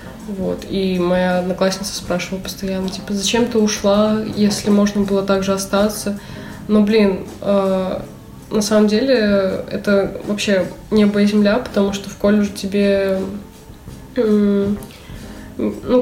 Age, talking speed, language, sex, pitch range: 20-39, 125 wpm, Russian, female, 195-215 Hz